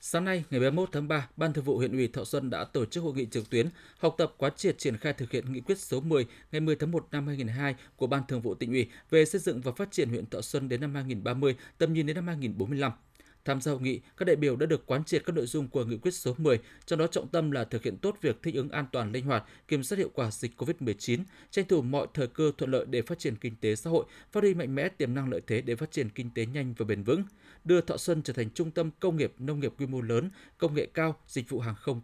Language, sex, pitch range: Vietnamese, male, 125-160 Hz